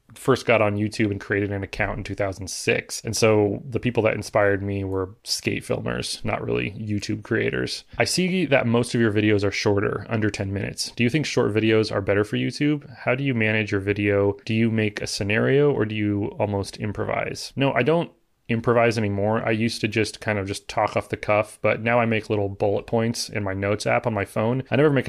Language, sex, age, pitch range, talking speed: English, male, 30-49, 100-115 Hz, 225 wpm